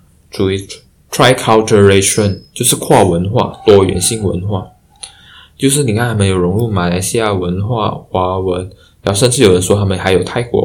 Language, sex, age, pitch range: Chinese, male, 20-39, 90-115 Hz